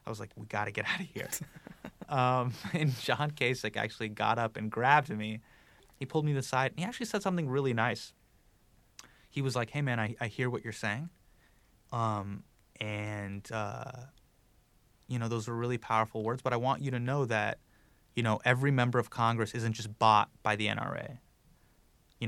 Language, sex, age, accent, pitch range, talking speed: English, male, 30-49, American, 110-135 Hz, 200 wpm